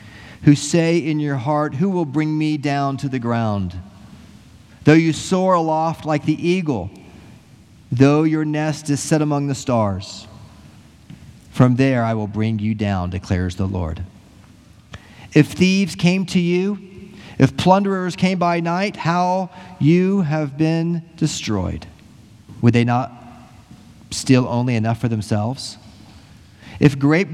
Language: English